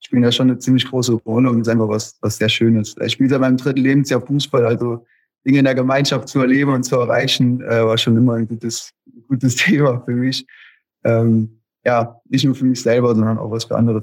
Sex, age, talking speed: male, 30-49, 235 wpm